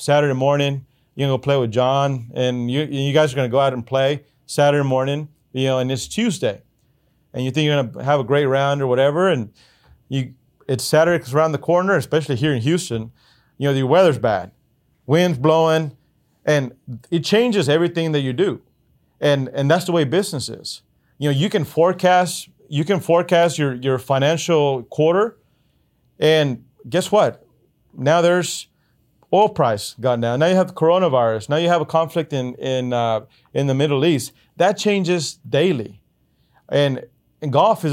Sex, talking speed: male, 185 wpm